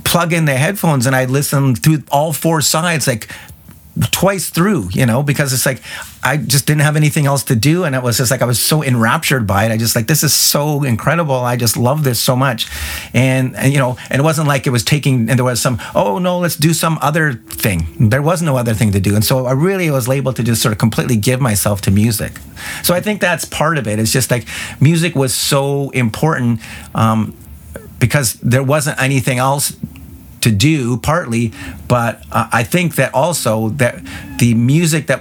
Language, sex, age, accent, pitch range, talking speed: English, male, 40-59, American, 115-145 Hz, 220 wpm